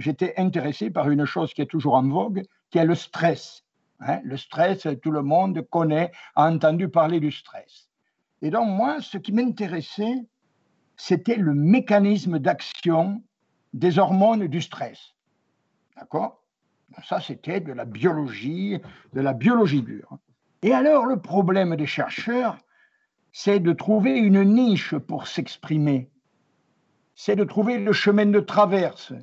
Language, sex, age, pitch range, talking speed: French, male, 60-79, 155-205 Hz, 140 wpm